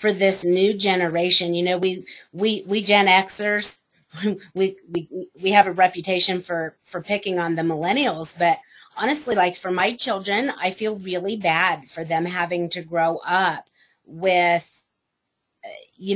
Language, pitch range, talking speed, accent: English, 175-205 Hz, 150 wpm, American